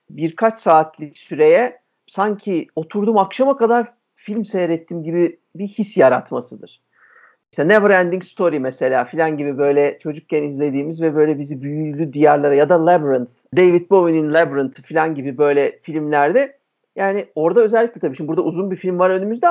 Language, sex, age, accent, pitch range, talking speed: Turkish, male, 50-69, native, 150-225 Hz, 150 wpm